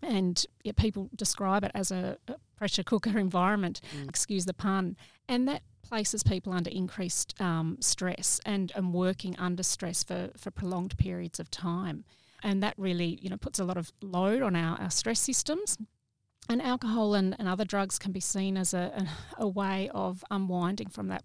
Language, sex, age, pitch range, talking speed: English, female, 30-49, 180-210 Hz, 185 wpm